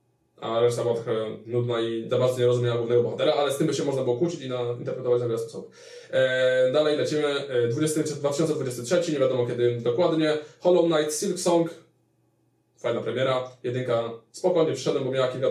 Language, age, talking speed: Polish, 20-39, 185 wpm